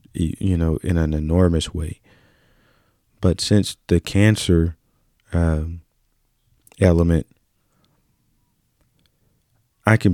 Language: English